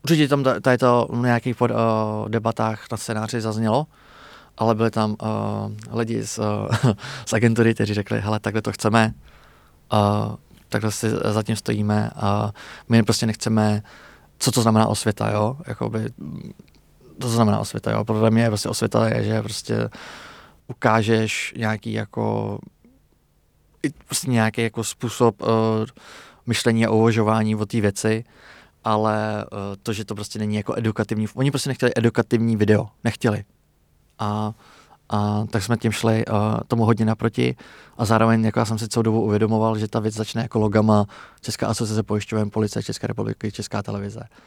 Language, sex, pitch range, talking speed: Czech, male, 105-115 Hz, 155 wpm